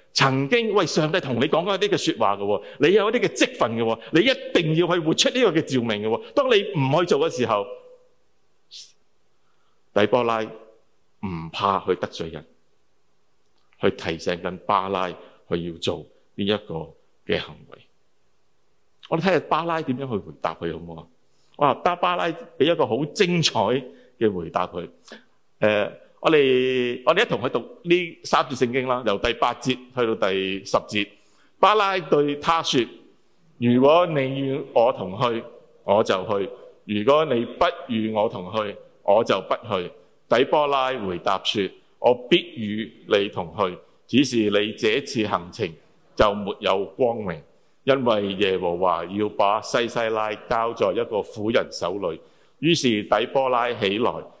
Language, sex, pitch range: English, male, 105-170 Hz